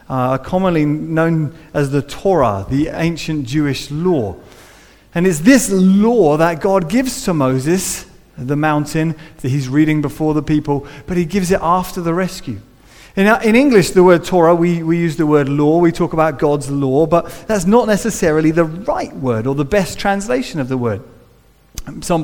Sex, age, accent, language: male, 30-49, British, English